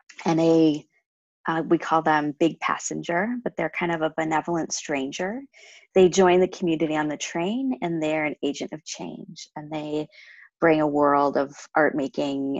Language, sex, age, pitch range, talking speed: English, female, 20-39, 145-170 Hz, 160 wpm